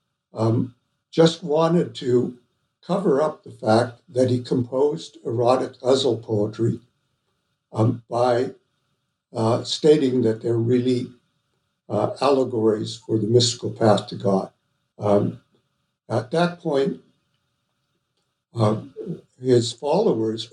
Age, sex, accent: 60-79, male, American